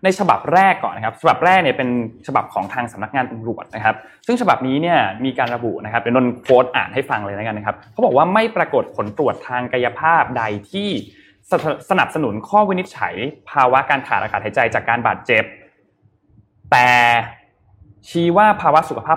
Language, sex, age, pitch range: Thai, male, 20-39, 110-155 Hz